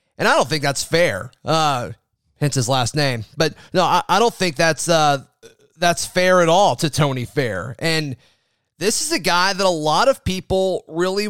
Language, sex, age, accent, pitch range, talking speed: English, male, 30-49, American, 145-175 Hz, 195 wpm